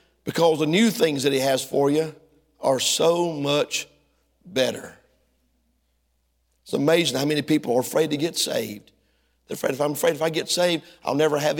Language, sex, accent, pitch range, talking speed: English, male, American, 130-180 Hz, 180 wpm